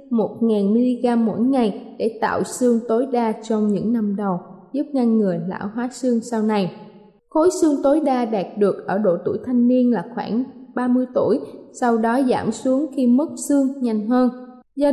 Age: 20-39